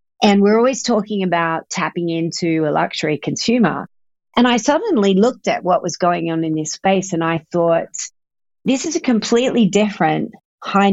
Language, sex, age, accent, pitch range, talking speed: English, female, 40-59, Australian, 170-215 Hz, 170 wpm